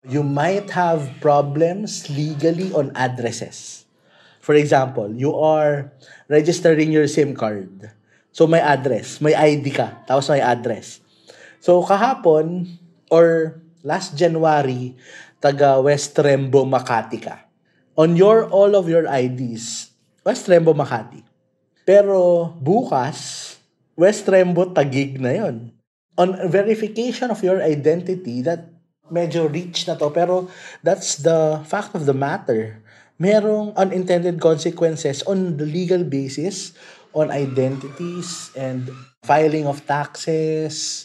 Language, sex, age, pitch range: Filipino, male, 20-39, 135-175 Hz